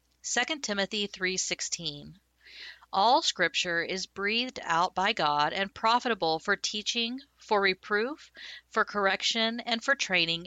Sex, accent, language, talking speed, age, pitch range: female, American, English, 120 wpm, 50-69, 165-225 Hz